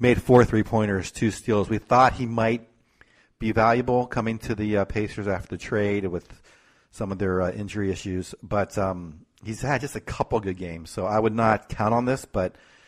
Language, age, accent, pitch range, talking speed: English, 40-59, American, 95-115 Hz, 200 wpm